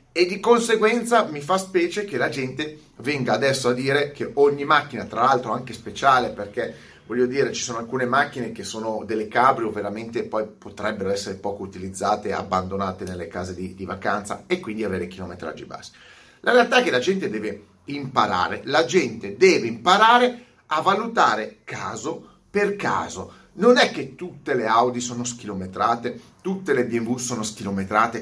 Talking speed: 170 wpm